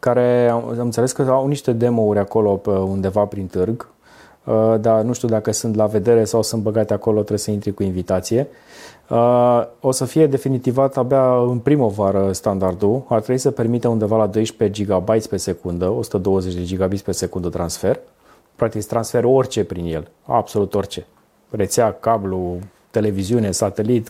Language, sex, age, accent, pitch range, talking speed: Romanian, male, 30-49, native, 105-125 Hz, 155 wpm